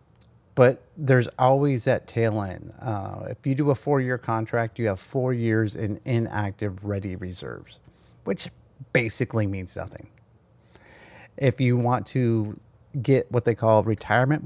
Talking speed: 140 wpm